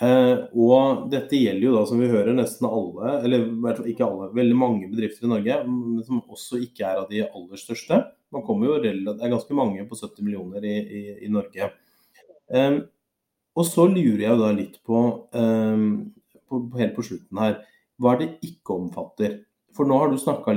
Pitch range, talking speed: 105-120 Hz, 195 wpm